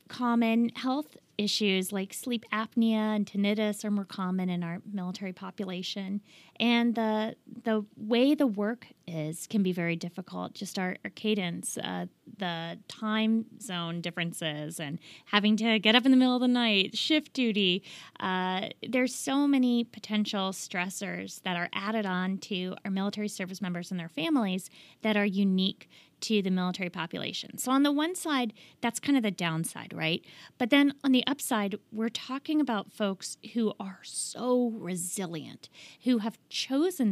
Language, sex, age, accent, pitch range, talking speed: English, female, 20-39, American, 190-245 Hz, 160 wpm